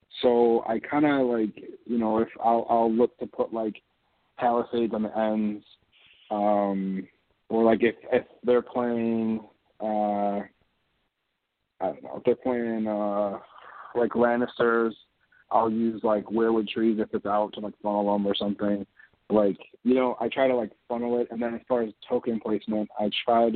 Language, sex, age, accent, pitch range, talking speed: English, male, 30-49, American, 105-120 Hz, 170 wpm